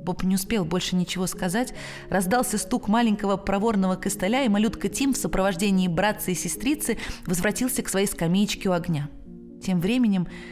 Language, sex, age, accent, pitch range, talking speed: Russian, female, 20-39, native, 170-230 Hz, 155 wpm